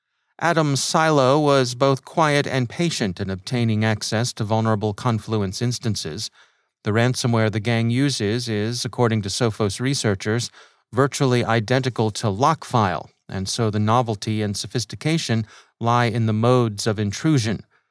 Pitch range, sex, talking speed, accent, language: 105-130 Hz, male, 135 wpm, American, English